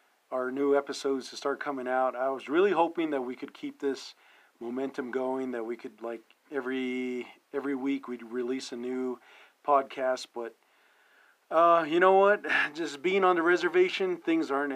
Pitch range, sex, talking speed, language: 120-145 Hz, male, 170 wpm, English